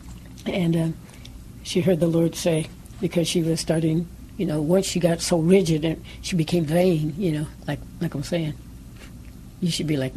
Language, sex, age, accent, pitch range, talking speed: English, female, 60-79, American, 145-175 Hz, 190 wpm